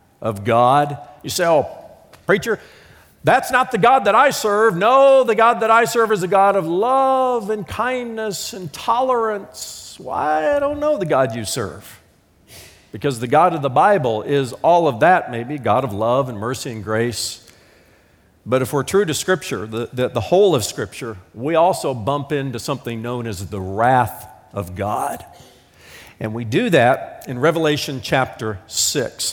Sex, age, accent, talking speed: male, 50-69, American, 175 wpm